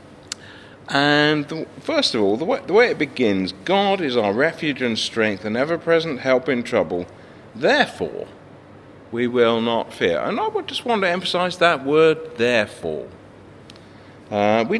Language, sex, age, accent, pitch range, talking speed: English, male, 50-69, British, 100-145 Hz, 160 wpm